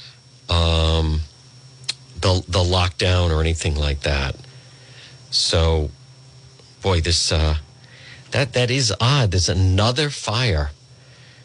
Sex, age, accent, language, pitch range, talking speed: male, 40-59, American, English, 95-130 Hz, 100 wpm